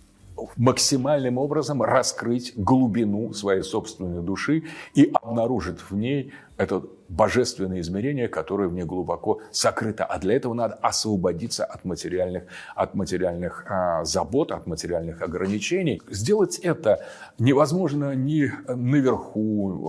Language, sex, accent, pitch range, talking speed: Russian, male, native, 90-125 Hz, 110 wpm